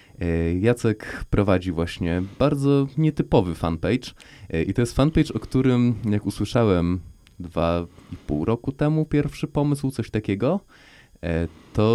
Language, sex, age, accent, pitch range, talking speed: Polish, male, 20-39, native, 85-110 Hz, 120 wpm